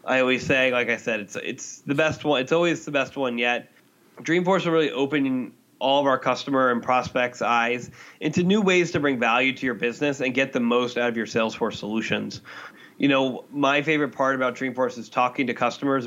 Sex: male